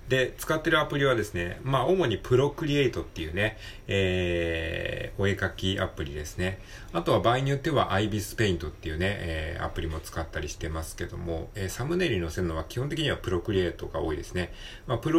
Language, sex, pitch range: Japanese, male, 85-120 Hz